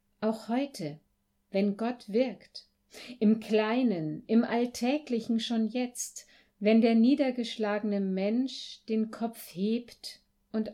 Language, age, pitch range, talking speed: German, 50-69, 195-245 Hz, 105 wpm